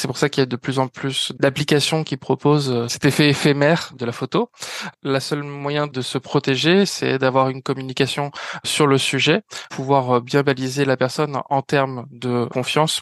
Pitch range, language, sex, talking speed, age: 130-150 Hz, French, male, 190 wpm, 20-39